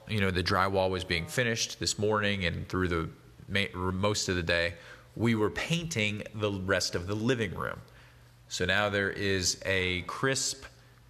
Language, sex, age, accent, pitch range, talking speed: English, male, 30-49, American, 90-120 Hz, 170 wpm